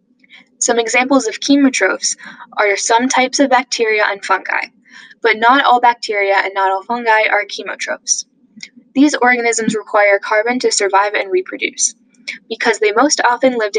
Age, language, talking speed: 10-29, English, 150 wpm